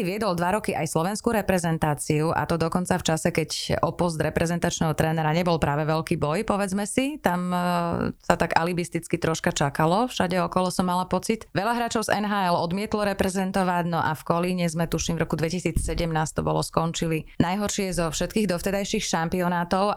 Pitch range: 165-200 Hz